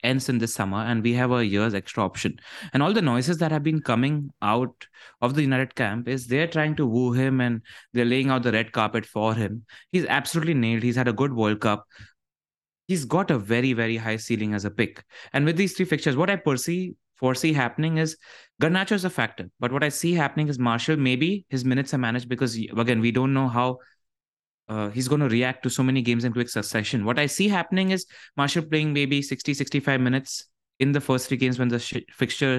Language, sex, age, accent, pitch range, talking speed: English, male, 20-39, Indian, 120-155 Hz, 220 wpm